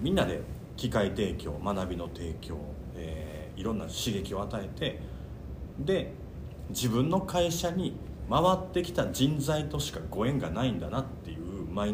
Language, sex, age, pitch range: Japanese, male, 40-59, 80-115 Hz